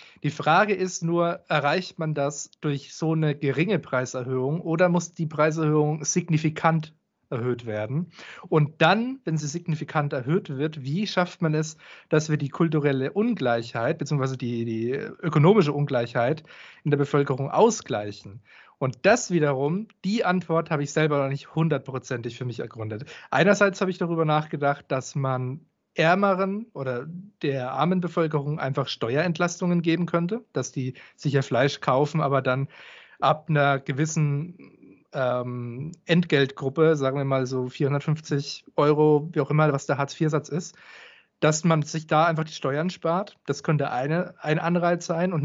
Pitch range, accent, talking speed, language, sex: 140-170 Hz, German, 150 wpm, German, male